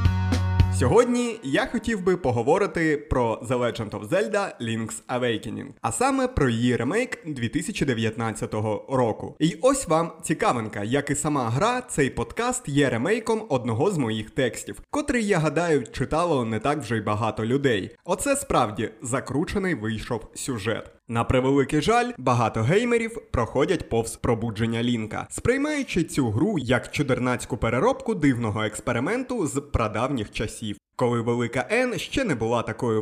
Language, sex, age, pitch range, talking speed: Ukrainian, male, 20-39, 115-180 Hz, 140 wpm